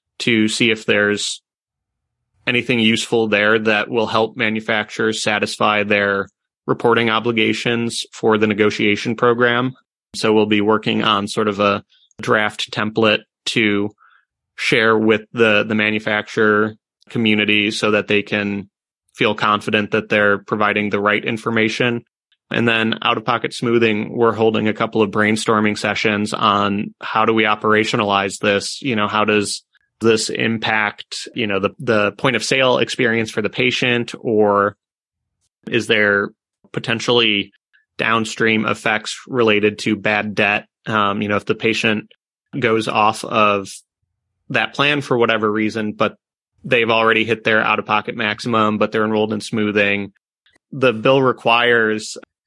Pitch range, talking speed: 105-115 Hz, 140 wpm